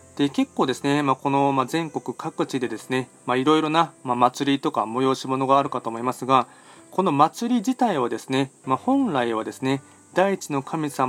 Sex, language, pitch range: male, Japanese, 130-160 Hz